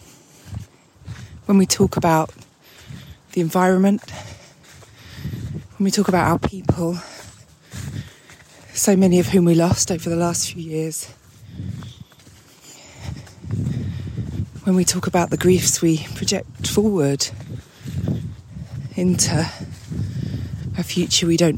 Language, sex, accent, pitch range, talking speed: English, female, British, 130-175 Hz, 105 wpm